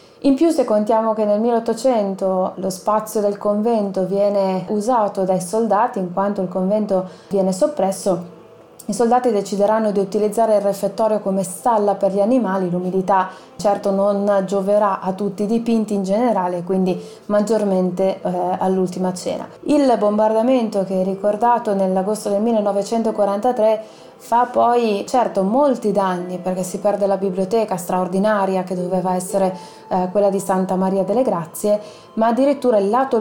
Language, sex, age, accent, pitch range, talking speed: Italian, female, 20-39, native, 190-230 Hz, 145 wpm